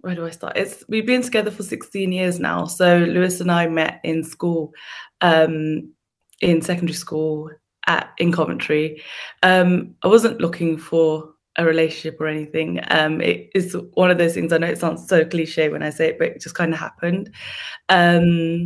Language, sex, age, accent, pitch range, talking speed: English, female, 20-39, British, 160-180 Hz, 190 wpm